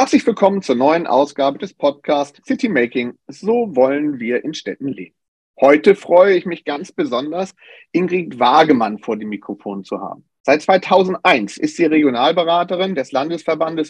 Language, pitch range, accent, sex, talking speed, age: German, 140-195 Hz, German, male, 145 wpm, 40-59